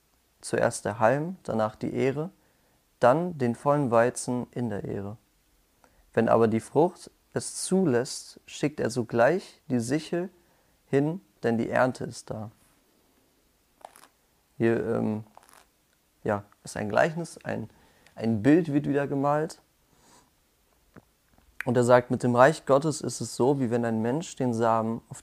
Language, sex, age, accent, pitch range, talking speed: German, male, 30-49, German, 110-135 Hz, 140 wpm